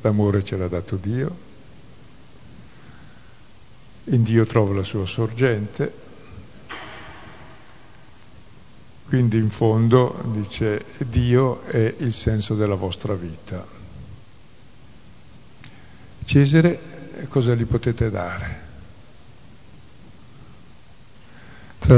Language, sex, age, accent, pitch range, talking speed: Italian, male, 50-69, native, 110-140 Hz, 75 wpm